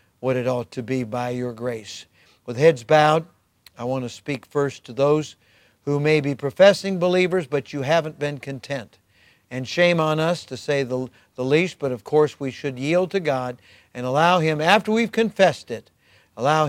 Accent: American